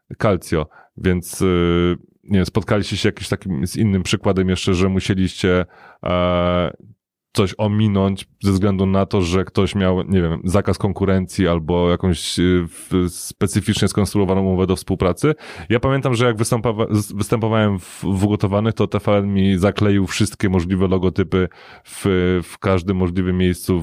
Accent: native